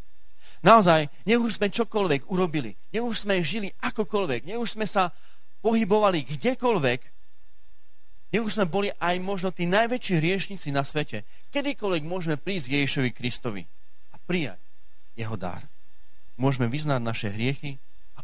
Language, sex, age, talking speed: Slovak, male, 30-49, 125 wpm